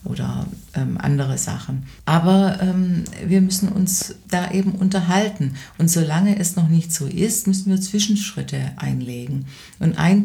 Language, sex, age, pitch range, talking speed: German, female, 50-69, 135-180 Hz, 145 wpm